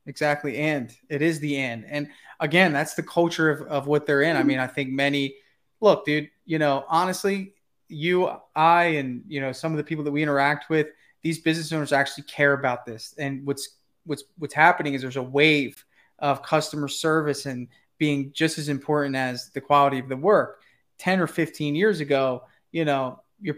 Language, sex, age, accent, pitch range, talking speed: English, male, 20-39, American, 140-175 Hz, 195 wpm